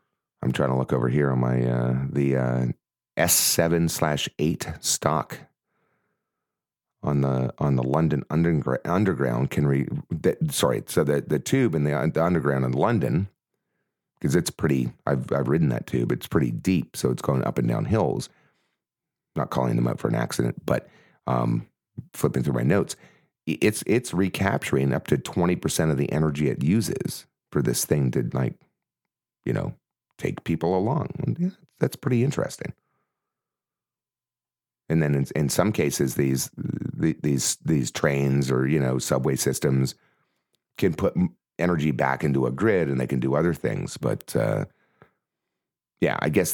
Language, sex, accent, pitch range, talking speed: English, male, American, 65-80 Hz, 165 wpm